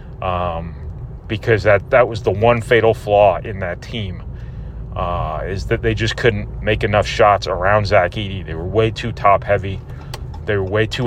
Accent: American